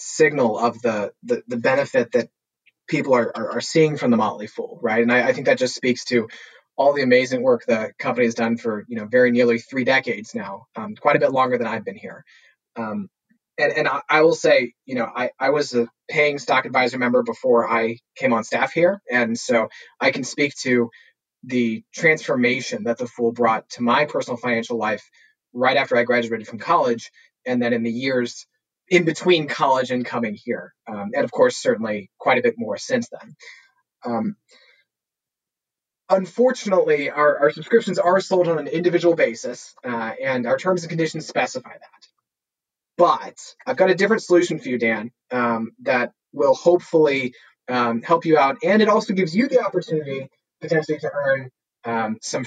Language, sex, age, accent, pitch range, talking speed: English, male, 30-49, American, 120-190 Hz, 190 wpm